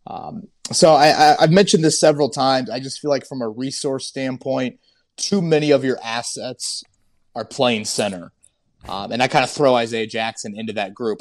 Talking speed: 195 wpm